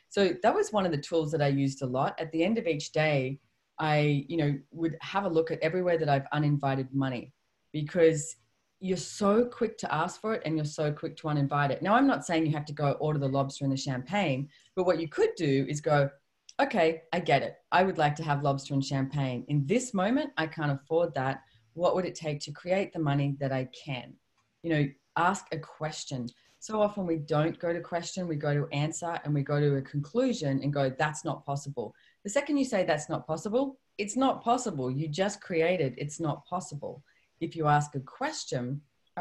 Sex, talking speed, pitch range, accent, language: female, 225 wpm, 140-180 Hz, Australian, English